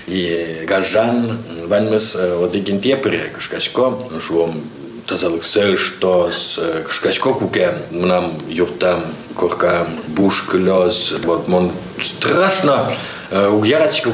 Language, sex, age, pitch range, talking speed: Russian, male, 60-79, 105-155 Hz, 65 wpm